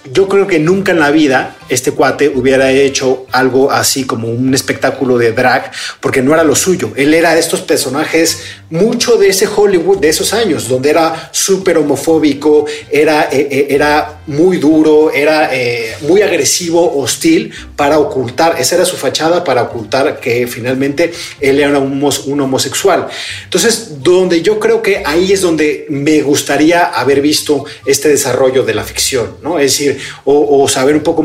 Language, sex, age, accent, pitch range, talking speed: Spanish, male, 40-59, Mexican, 130-170 Hz, 170 wpm